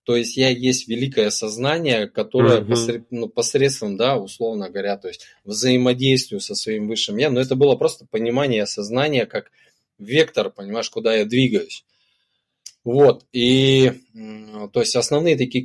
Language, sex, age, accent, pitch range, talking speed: Russian, male, 20-39, native, 115-135 Hz, 140 wpm